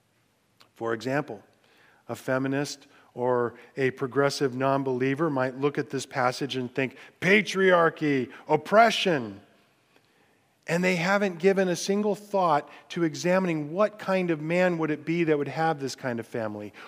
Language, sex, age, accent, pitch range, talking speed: English, male, 40-59, American, 135-185 Hz, 140 wpm